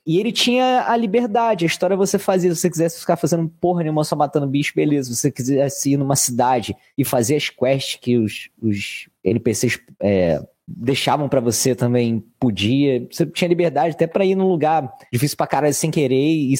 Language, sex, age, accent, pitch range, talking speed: Portuguese, male, 20-39, Brazilian, 110-140 Hz, 195 wpm